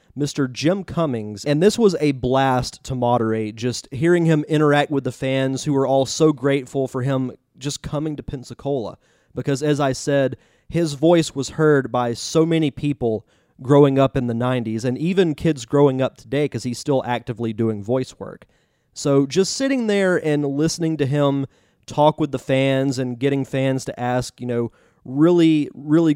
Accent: American